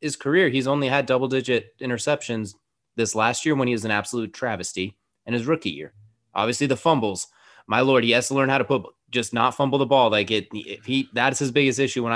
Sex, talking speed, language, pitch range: male, 215 wpm, English, 105-130 Hz